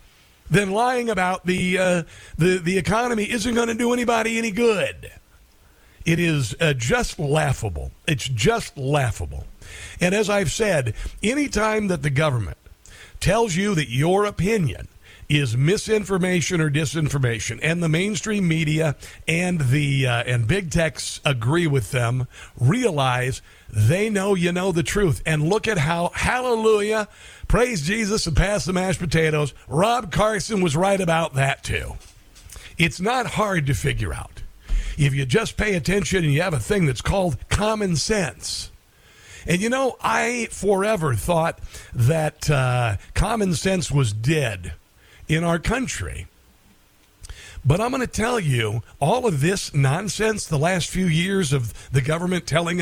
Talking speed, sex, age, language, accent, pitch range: 150 wpm, male, 50-69, English, American, 130-200 Hz